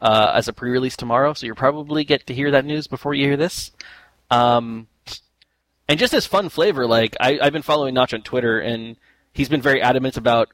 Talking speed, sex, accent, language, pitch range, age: 210 wpm, male, American, English, 115-145 Hz, 20-39